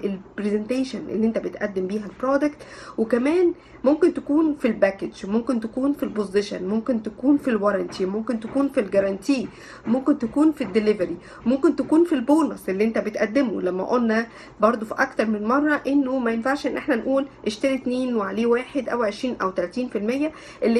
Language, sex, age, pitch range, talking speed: Arabic, female, 50-69, 210-275 Hz, 160 wpm